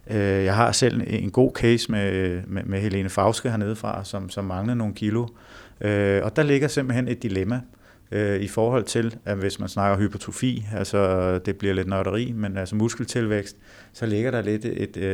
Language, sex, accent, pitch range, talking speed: Danish, male, native, 100-120 Hz, 180 wpm